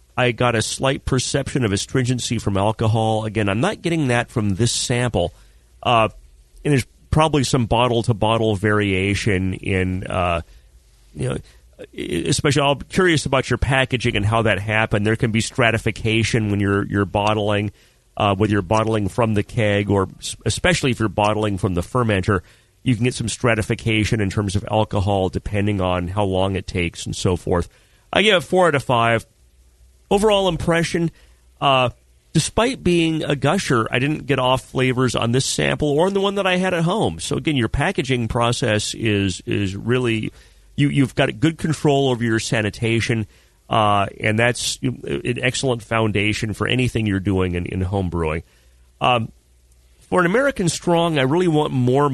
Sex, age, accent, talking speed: male, 40-59, American, 175 wpm